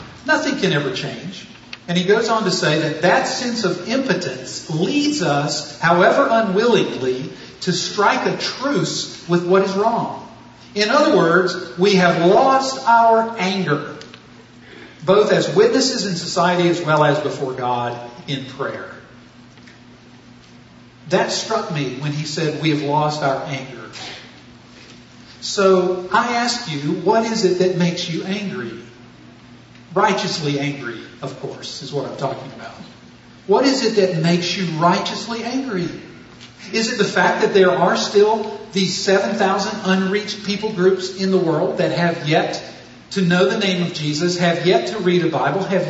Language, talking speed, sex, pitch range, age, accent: English, 155 wpm, male, 165-215 Hz, 50-69, American